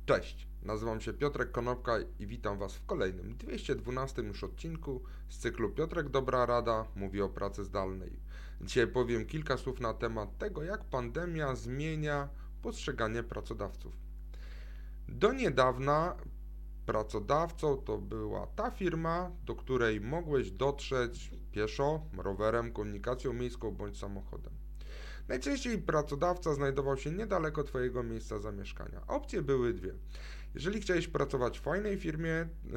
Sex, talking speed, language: male, 125 wpm, Polish